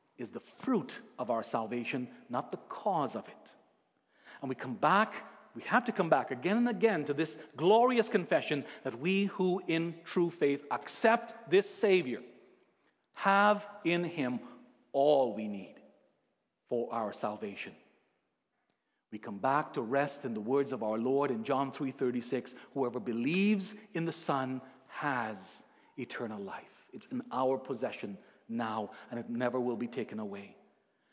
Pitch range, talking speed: 130-195 Hz, 150 wpm